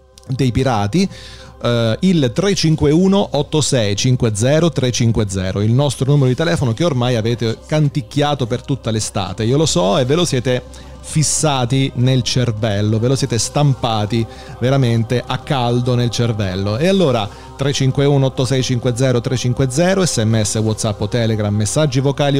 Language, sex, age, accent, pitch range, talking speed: Italian, male, 30-49, native, 110-135 Hz, 130 wpm